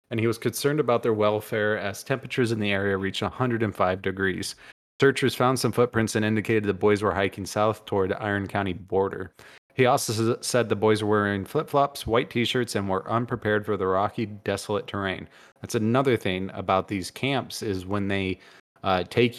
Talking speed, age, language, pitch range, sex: 185 wpm, 30-49, English, 95-115 Hz, male